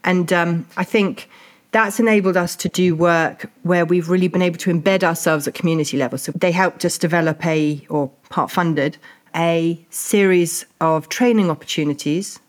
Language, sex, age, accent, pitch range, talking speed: English, female, 40-59, British, 165-200 Hz, 170 wpm